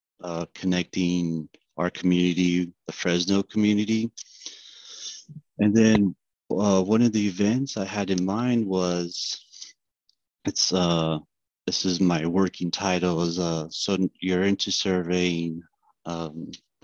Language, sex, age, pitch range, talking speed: English, male, 30-49, 85-95 Hz, 120 wpm